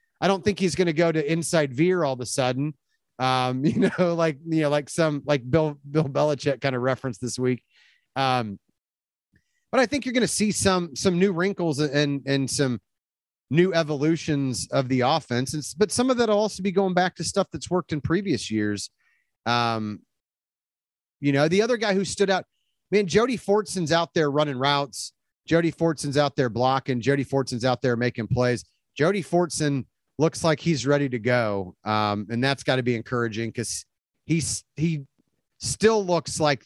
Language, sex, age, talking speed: English, male, 30-49, 185 wpm